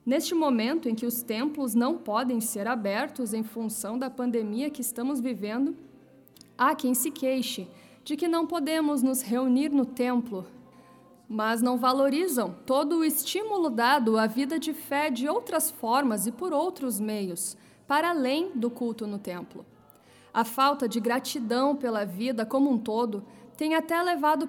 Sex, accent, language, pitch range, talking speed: female, Brazilian, Portuguese, 225-285 Hz, 160 wpm